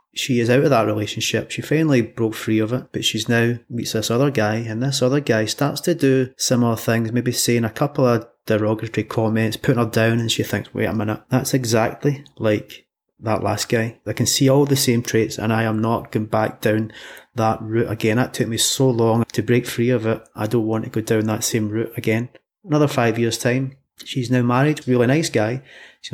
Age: 30-49